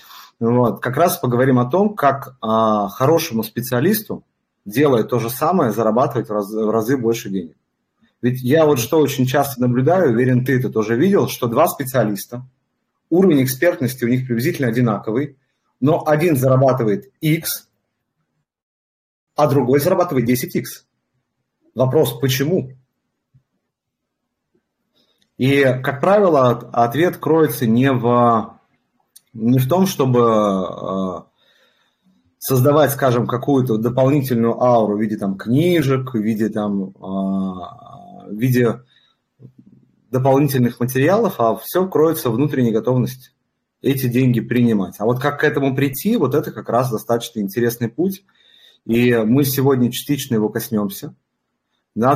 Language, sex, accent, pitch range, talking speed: Russian, male, native, 115-140 Hz, 120 wpm